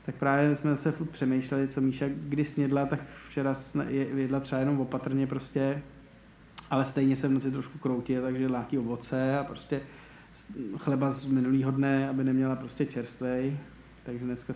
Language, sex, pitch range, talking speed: Czech, male, 130-145 Hz, 160 wpm